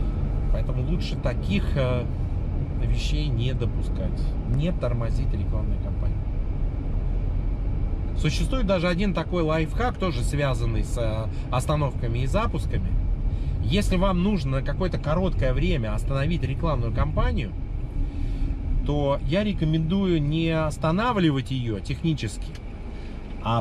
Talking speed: 95 wpm